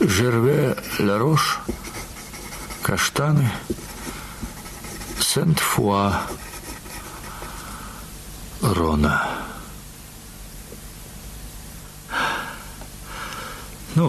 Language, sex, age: Russian, male, 60-79